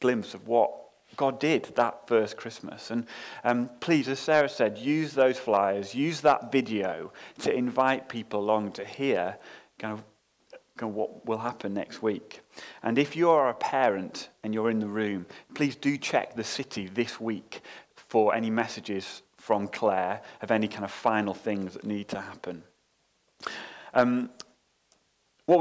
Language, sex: English, male